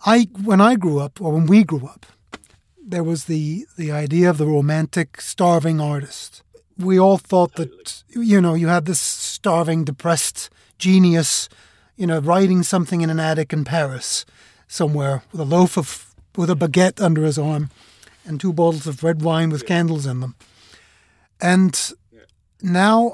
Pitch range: 150-200 Hz